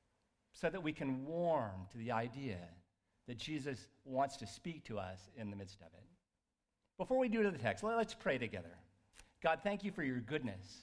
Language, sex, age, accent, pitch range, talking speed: English, male, 50-69, American, 100-140 Hz, 195 wpm